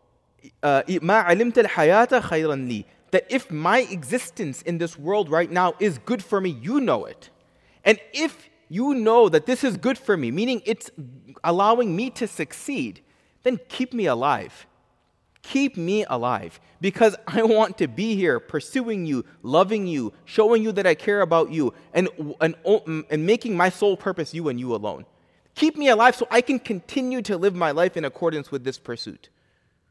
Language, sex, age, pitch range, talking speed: English, male, 30-49, 165-245 Hz, 170 wpm